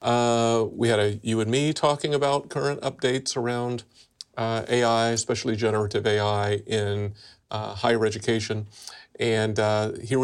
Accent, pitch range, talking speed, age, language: American, 110-135 Hz, 140 wpm, 40-59, English